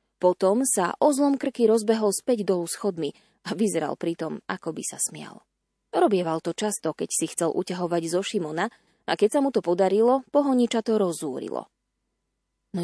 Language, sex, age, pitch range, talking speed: Slovak, female, 20-39, 170-225 Hz, 160 wpm